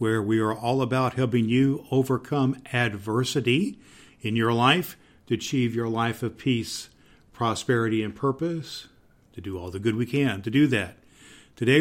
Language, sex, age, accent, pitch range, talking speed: English, male, 50-69, American, 110-135 Hz, 165 wpm